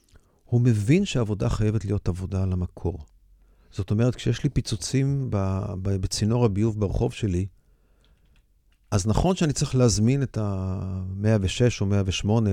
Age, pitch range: 40-59, 95-120 Hz